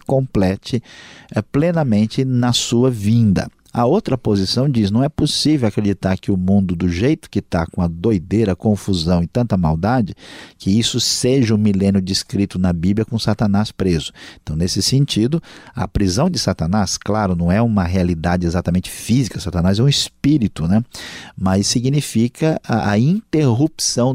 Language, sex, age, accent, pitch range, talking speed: Portuguese, male, 50-69, Brazilian, 95-120 Hz, 160 wpm